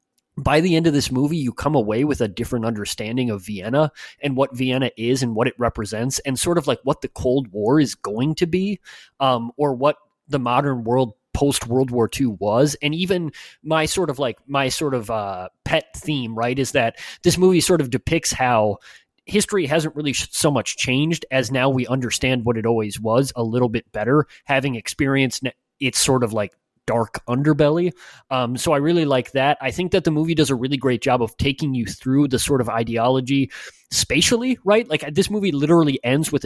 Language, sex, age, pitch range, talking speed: English, male, 20-39, 125-150 Hz, 205 wpm